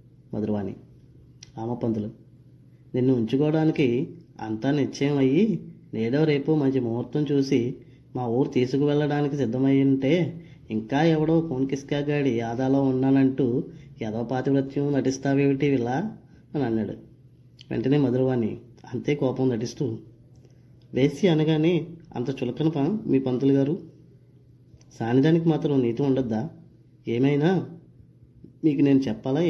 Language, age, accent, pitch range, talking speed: Telugu, 20-39, native, 120-140 Hz, 100 wpm